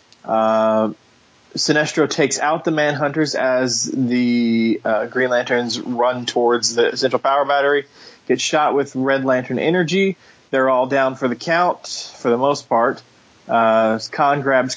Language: English